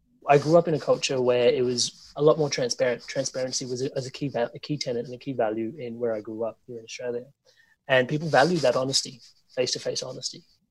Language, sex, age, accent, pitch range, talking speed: English, male, 30-49, Australian, 120-140 Hz, 245 wpm